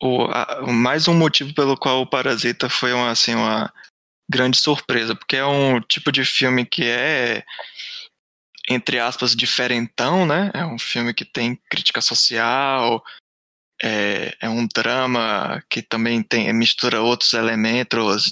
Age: 20-39